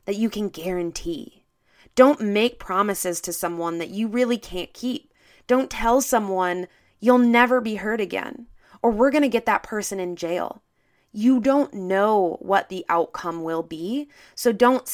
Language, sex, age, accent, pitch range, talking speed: English, female, 20-39, American, 175-230 Hz, 165 wpm